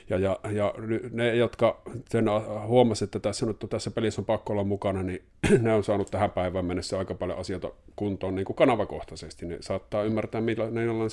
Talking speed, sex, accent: 175 wpm, male, native